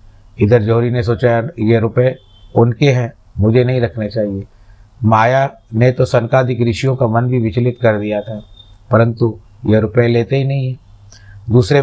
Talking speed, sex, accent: 160 wpm, male, native